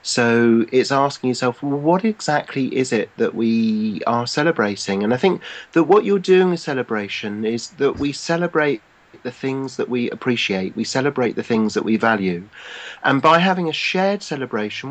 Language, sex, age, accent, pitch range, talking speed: English, male, 40-59, British, 115-165 Hz, 175 wpm